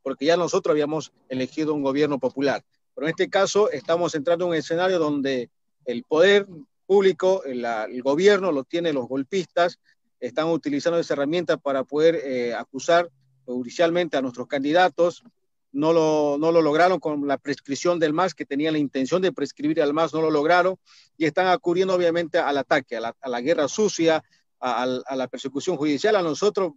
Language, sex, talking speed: Spanish, male, 180 wpm